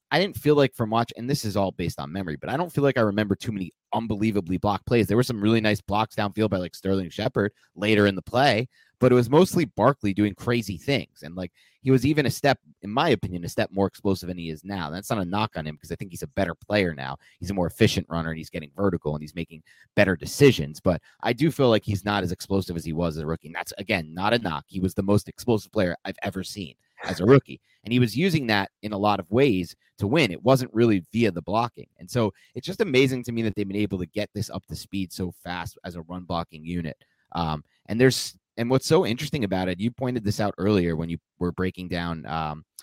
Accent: American